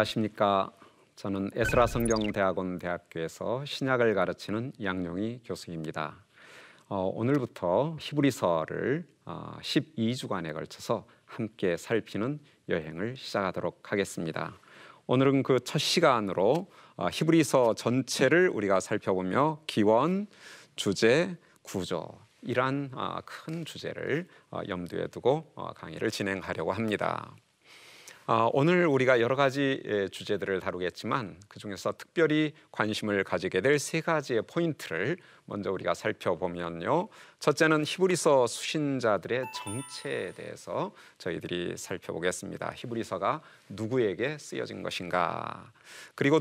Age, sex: 40-59, male